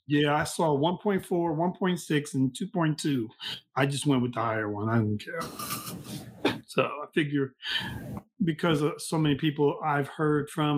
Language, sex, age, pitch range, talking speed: English, male, 40-59, 140-165 Hz, 155 wpm